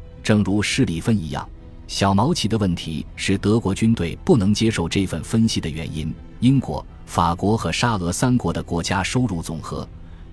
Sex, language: male, Chinese